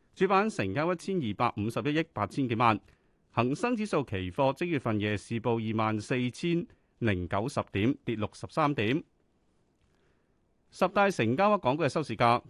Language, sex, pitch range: Chinese, male, 110-165 Hz